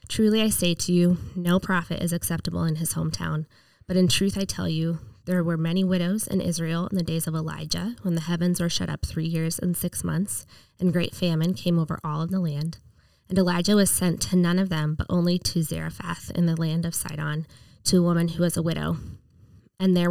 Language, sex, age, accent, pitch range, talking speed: English, female, 10-29, American, 160-185 Hz, 225 wpm